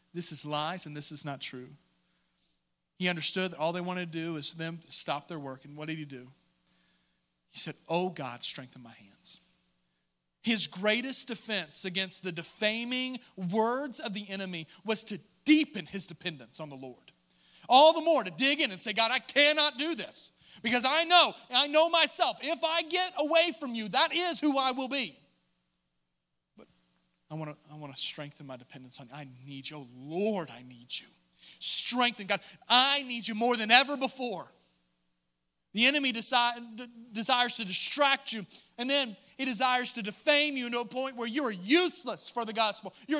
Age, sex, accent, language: 40-59, male, American, English